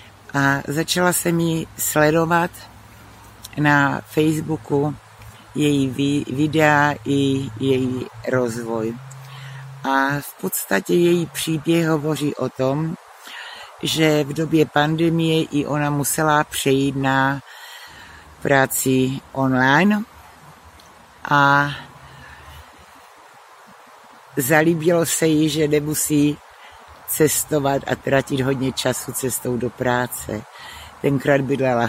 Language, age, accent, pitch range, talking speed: Czech, 60-79, native, 130-155 Hz, 90 wpm